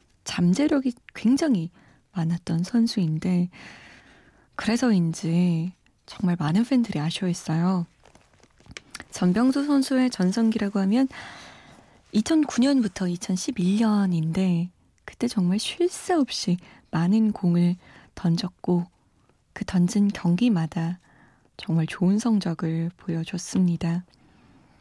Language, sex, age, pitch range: Korean, female, 20-39, 175-225 Hz